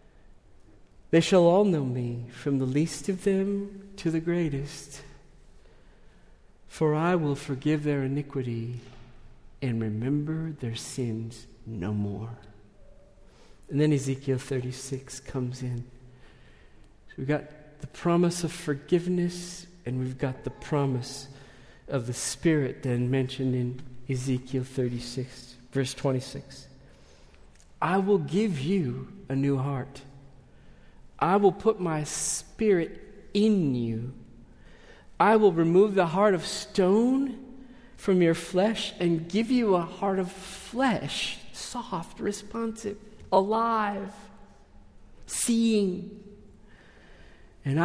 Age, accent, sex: 50-69, American, male